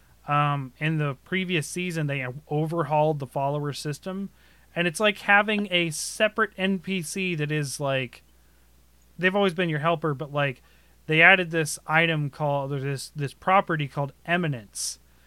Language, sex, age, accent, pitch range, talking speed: English, male, 20-39, American, 125-165 Hz, 150 wpm